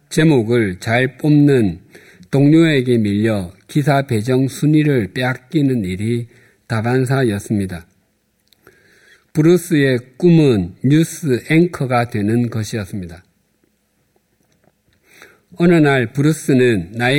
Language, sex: Korean, male